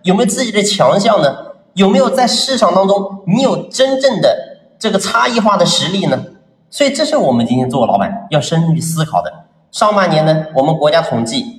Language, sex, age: Chinese, male, 30-49